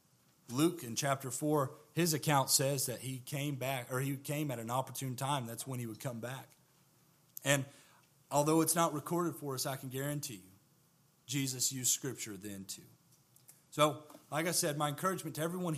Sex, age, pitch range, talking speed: male, 40-59, 135-175 Hz, 185 wpm